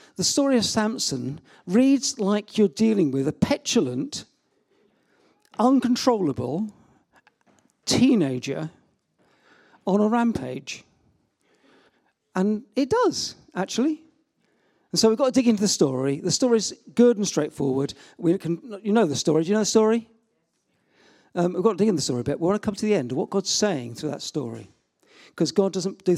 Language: English